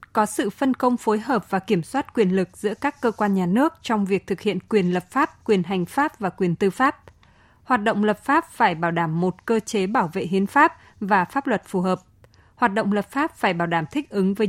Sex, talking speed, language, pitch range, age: female, 250 wpm, Vietnamese, 185-245 Hz, 20-39